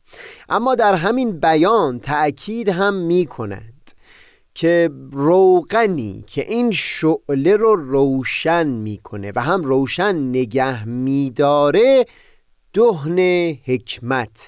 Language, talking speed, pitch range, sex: Persian, 90 wpm, 125-185 Hz, male